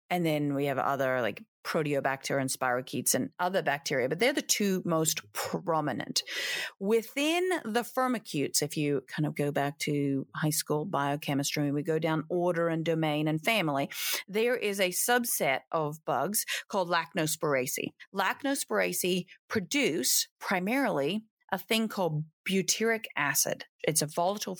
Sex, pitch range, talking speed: female, 165-225 Hz, 140 wpm